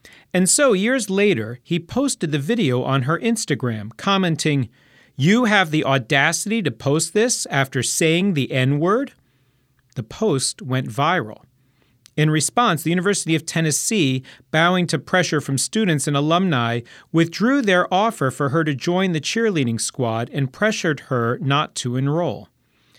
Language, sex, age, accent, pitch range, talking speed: English, male, 40-59, American, 130-190 Hz, 145 wpm